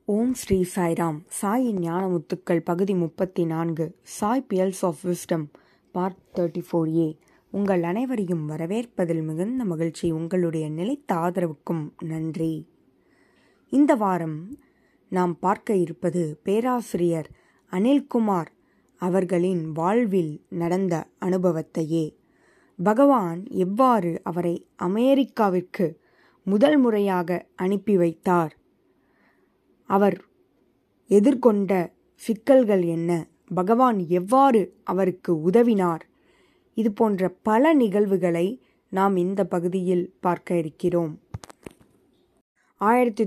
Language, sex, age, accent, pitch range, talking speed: Tamil, female, 20-39, native, 175-220 Hz, 85 wpm